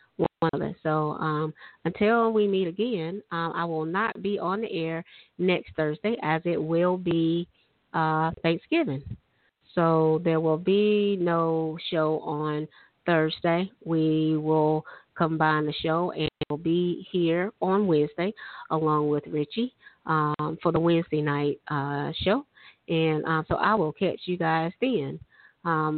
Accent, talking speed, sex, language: American, 150 wpm, female, English